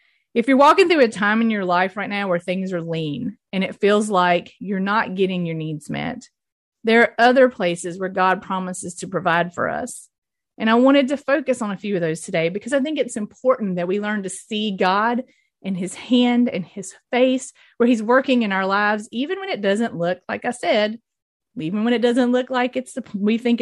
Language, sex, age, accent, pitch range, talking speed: English, female, 30-49, American, 175-235 Hz, 220 wpm